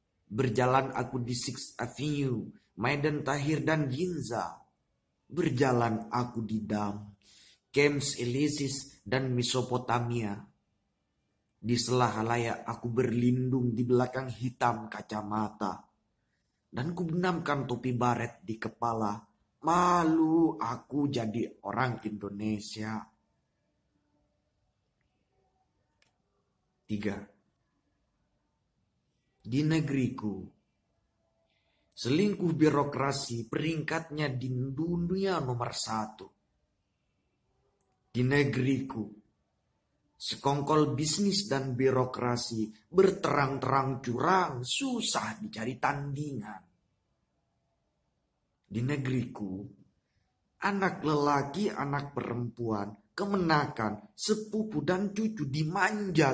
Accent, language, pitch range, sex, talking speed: native, Indonesian, 110-145 Hz, male, 70 wpm